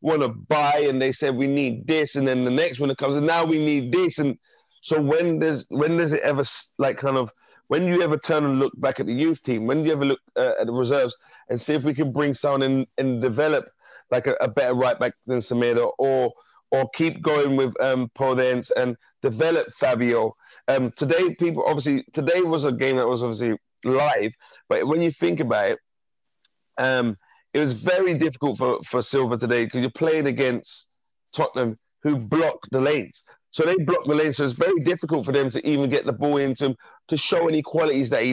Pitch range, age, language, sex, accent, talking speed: 130-160 Hz, 30-49, English, male, British, 220 wpm